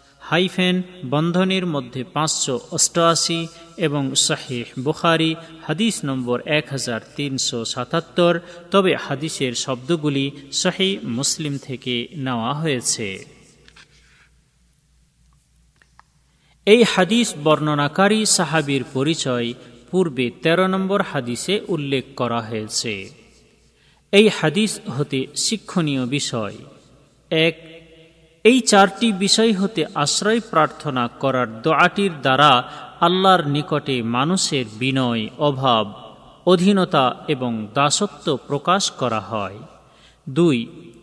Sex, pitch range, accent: male, 130-180 Hz, native